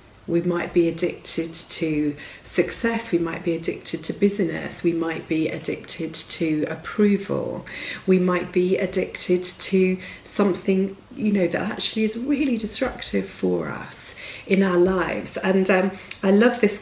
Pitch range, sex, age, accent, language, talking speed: 165-215 Hz, female, 40-59, British, English, 145 wpm